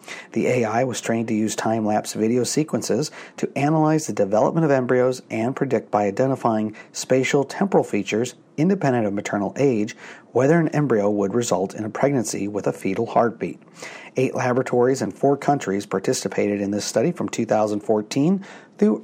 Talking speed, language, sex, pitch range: 160 wpm, English, male, 105-130 Hz